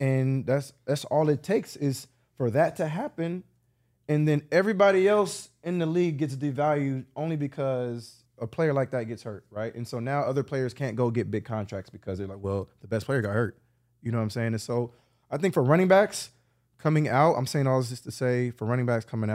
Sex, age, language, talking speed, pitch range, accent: male, 20-39, English, 230 wpm, 120-145 Hz, American